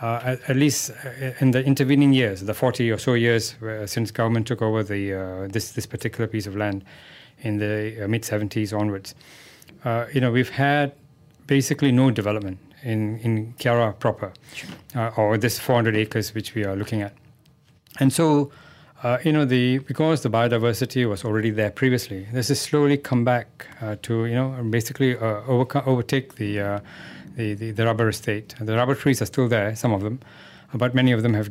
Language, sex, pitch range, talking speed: English, male, 110-135 Hz, 195 wpm